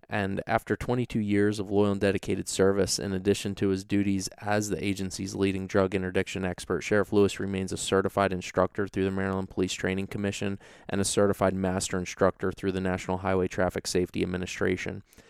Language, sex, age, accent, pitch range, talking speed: English, male, 20-39, American, 95-100 Hz, 175 wpm